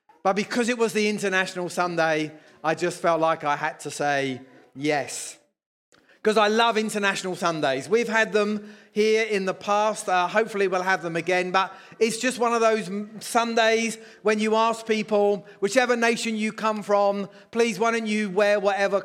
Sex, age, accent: male, 30-49, British